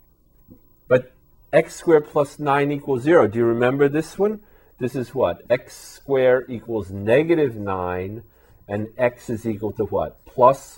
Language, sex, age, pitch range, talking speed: English, male, 40-59, 95-125 Hz, 145 wpm